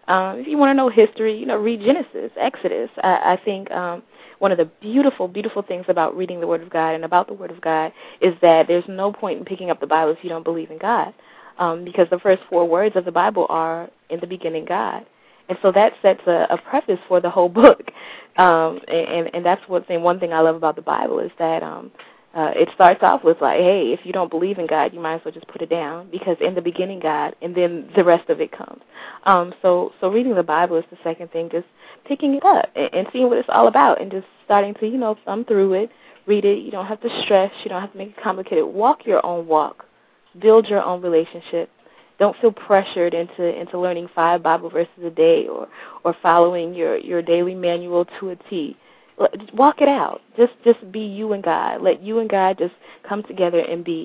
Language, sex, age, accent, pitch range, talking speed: English, female, 20-39, American, 170-205 Hz, 235 wpm